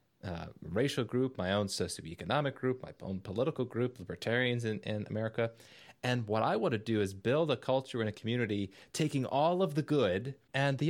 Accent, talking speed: American, 195 wpm